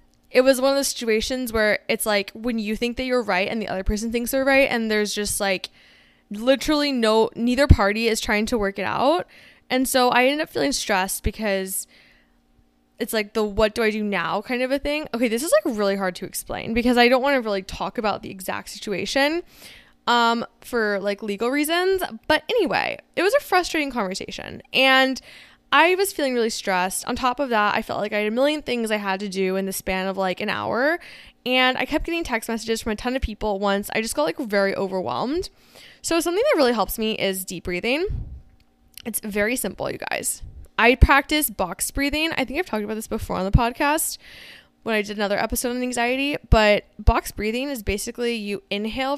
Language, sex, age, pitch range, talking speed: English, female, 10-29, 210-275 Hz, 215 wpm